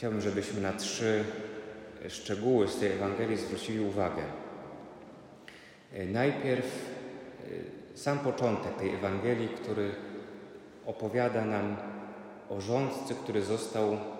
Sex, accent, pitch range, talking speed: male, native, 105-140 Hz, 95 wpm